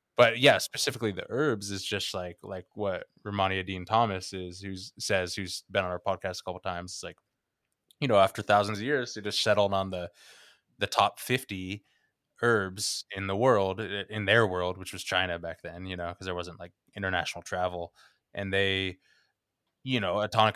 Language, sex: English, male